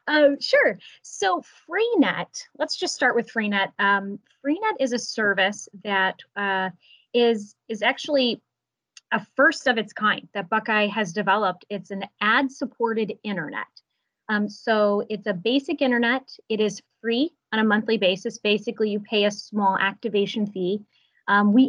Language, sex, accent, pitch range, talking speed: English, female, American, 200-245 Hz, 150 wpm